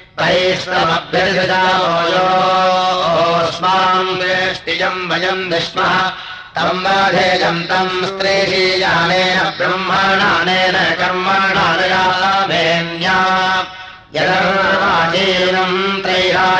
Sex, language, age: male, Russian, 30-49